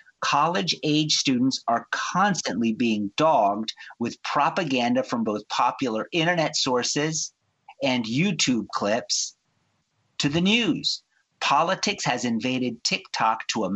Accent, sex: American, male